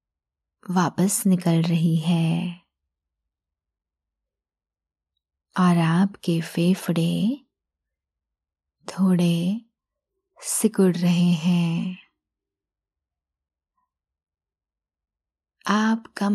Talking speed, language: 45 wpm, Hindi